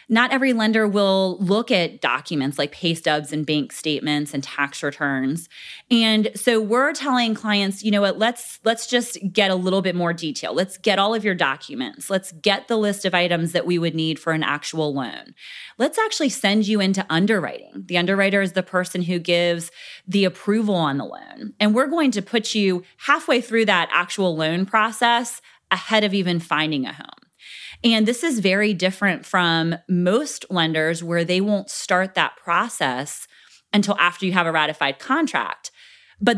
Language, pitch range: English, 165-210 Hz